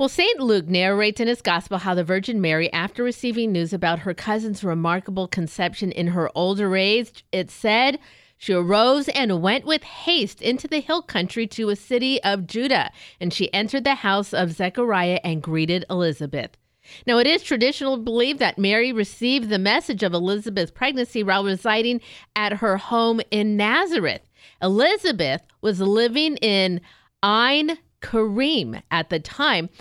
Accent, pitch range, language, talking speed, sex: American, 190-250 Hz, English, 160 wpm, female